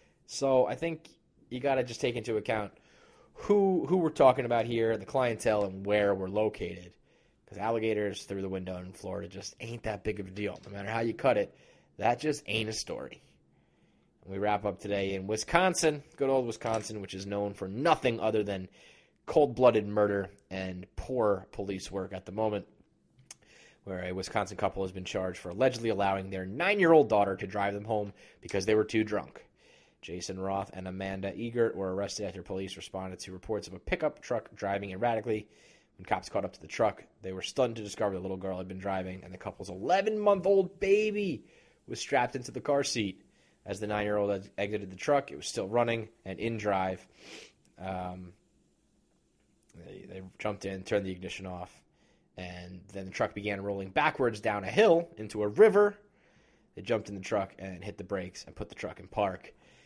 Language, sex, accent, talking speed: English, male, American, 190 wpm